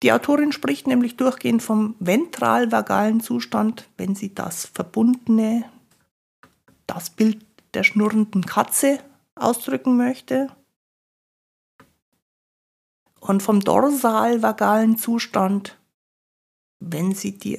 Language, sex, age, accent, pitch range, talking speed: German, female, 60-79, German, 205-255 Hz, 90 wpm